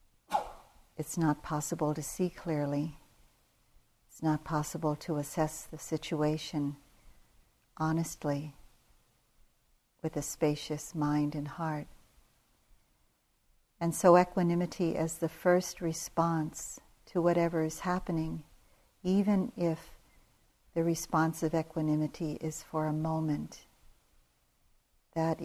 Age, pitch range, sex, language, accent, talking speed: 60-79, 150-170 Hz, female, English, American, 100 wpm